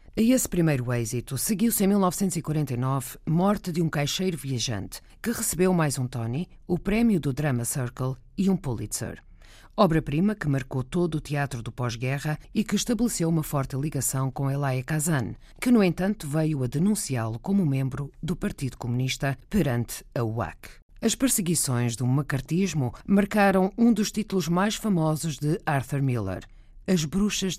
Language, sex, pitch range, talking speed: Portuguese, female, 125-185 Hz, 155 wpm